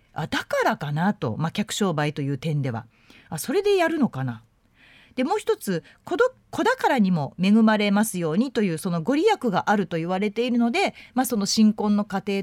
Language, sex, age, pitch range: Japanese, female, 40-59, 165-265 Hz